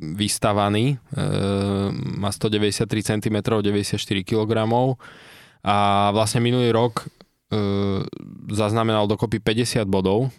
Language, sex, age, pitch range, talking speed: Slovak, male, 20-39, 105-120 Hz, 90 wpm